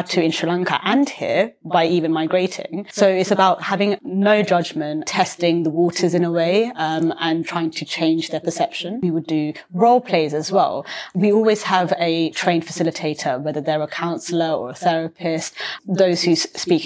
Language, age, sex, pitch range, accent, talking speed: English, 20-39, female, 170-200 Hz, British, 180 wpm